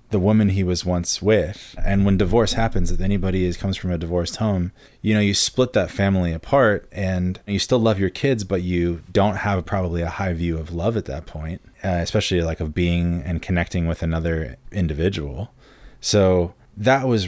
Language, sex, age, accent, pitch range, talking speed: English, male, 20-39, American, 85-105 Hz, 200 wpm